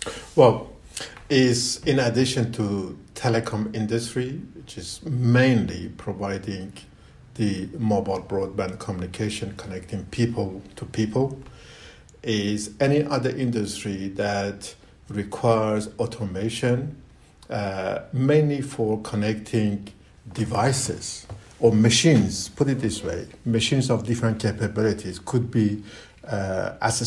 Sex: male